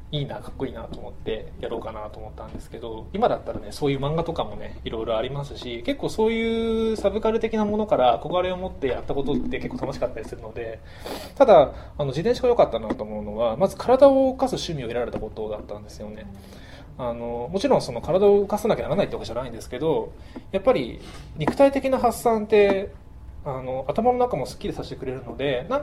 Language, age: Japanese, 20-39